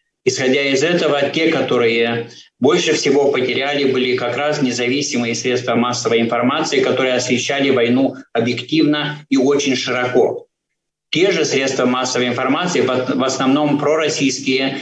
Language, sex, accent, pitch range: Russian, male, native, 125-150 Hz